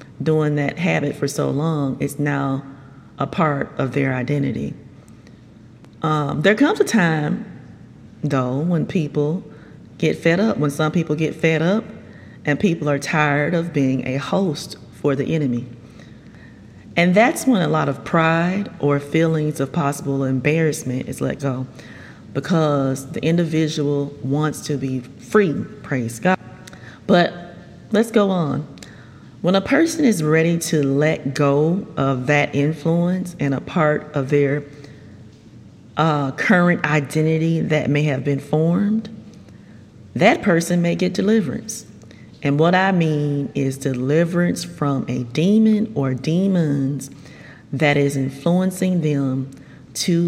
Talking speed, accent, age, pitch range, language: 135 wpm, American, 30-49, 135-165 Hz, English